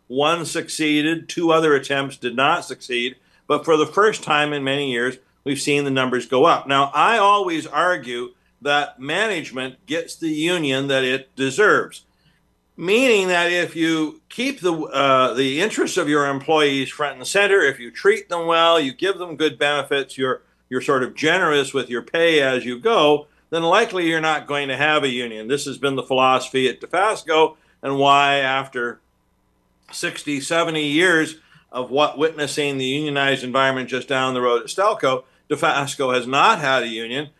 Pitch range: 135-165 Hz